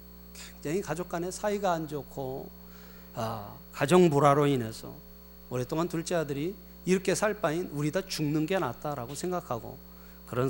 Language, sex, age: Korean, male, 40-59